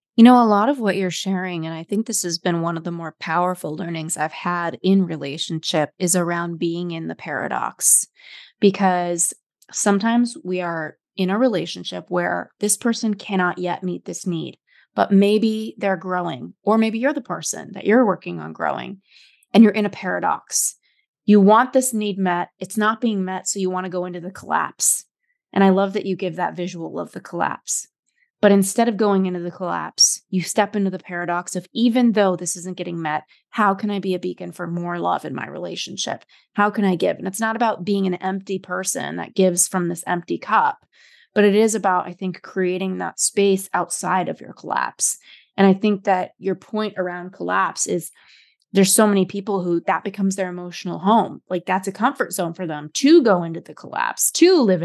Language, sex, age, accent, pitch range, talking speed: English, female, 20-39, American, 175-210 Hz, 205 wpm